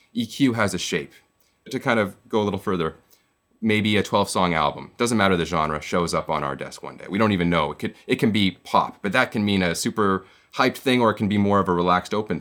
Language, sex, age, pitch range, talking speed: English, male, 30-49, 85-110 Hz, 255 wpm